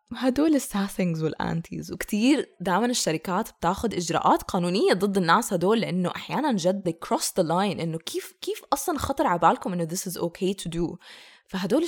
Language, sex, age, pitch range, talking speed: English, female, 20-39, 170-210 Hz, 165 wpm